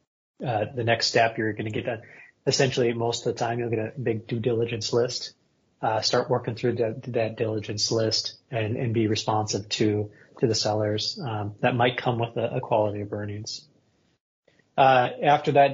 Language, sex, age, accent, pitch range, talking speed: English, male, 30-49, American, 110-130 Hz, 190 wpm